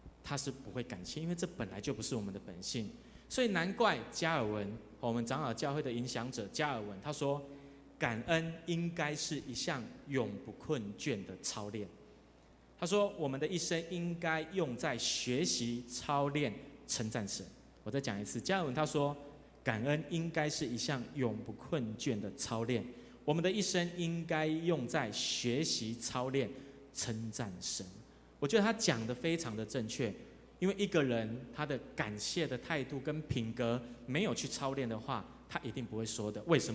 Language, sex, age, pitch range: Chinese, male, 30-49, 115-155 Hz